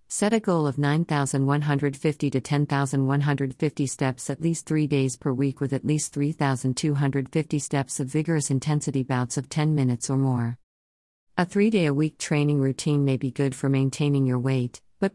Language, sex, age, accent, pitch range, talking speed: English, female, 50-69, American, 130-155 Hz, 160 wpm